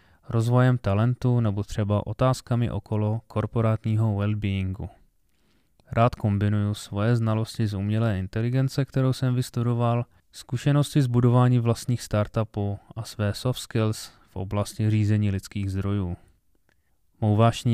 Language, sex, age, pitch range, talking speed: Czech, male, 20-39, 105-125 Hz, 110 wpm